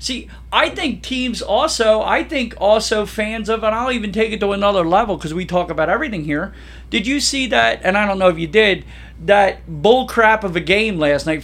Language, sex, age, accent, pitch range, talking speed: English, male, 40-59, American, 175-235 Hz, 225 wpm